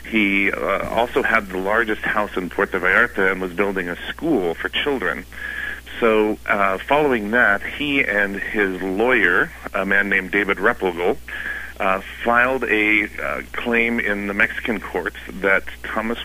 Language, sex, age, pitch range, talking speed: English, male, 40-59, 95-115 Hz, 150 wpm